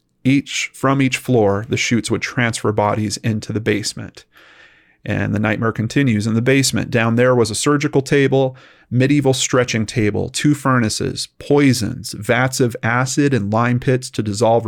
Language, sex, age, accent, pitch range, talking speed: English, male, 30-49, American, 110-130 Hz, 160 wpm